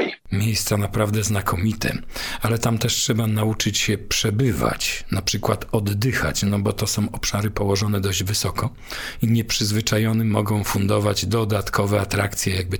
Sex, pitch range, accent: male, 100-115 Hz, native